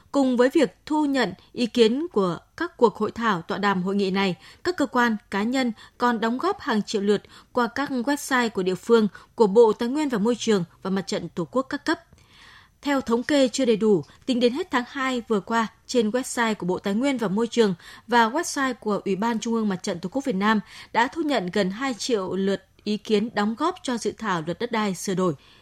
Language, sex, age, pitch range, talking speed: Vietnamese, female, 20-39, 205-260 Hz, 240 wpm